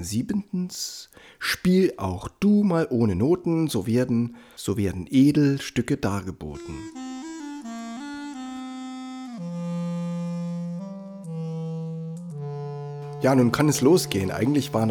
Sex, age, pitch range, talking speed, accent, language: male, 60-79, 105-155 Hz, 80 wpm, German, German